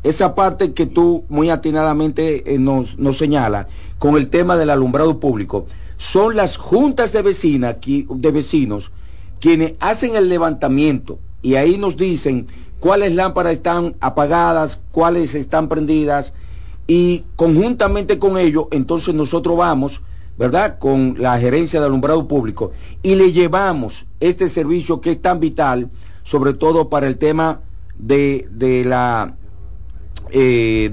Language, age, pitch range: Spanish, 50-69, 125-170 Hz